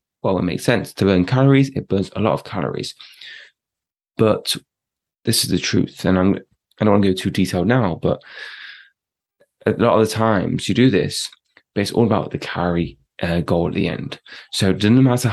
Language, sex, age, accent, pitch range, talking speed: English, male, 20-39, British, 90-120 Hz, 205 wpm